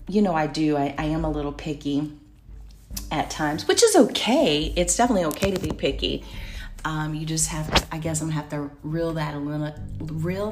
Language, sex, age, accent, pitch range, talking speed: English, female, 40-59, American, 140-170 Hz, 195 wpm